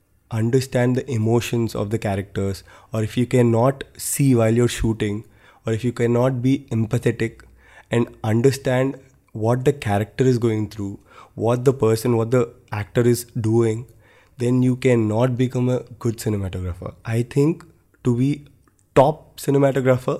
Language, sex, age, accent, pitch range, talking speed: Hindi, male, 20-39, native, 110-130 Hz, 145 wpm